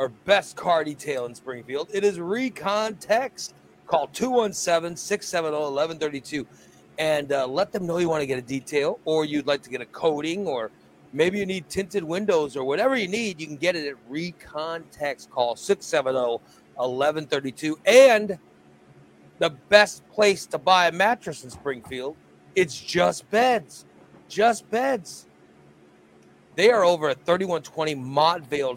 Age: 40-59